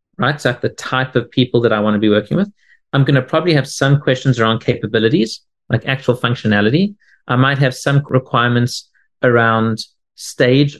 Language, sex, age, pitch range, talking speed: English, male, 30-49, 125-160 Hz, 180 wpm